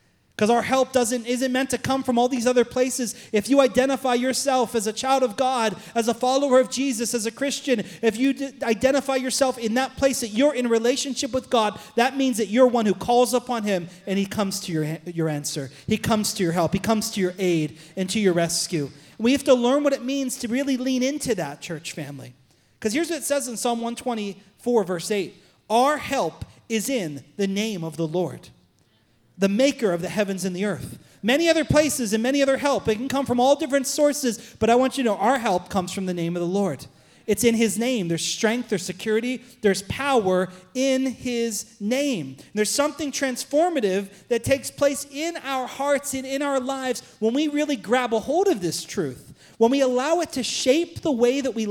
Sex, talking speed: male, 220 wpm